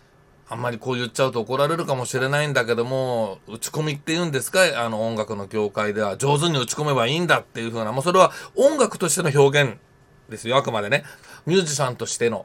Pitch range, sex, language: 120-165 Hz, male, Japanese